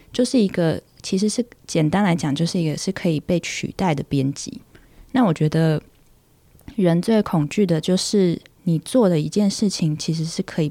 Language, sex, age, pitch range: Chinese, female, 20-39, 155-200 Hz